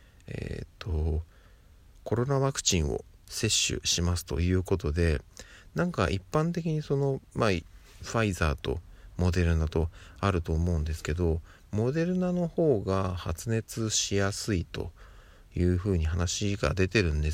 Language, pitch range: Japanese, 85-110 Hz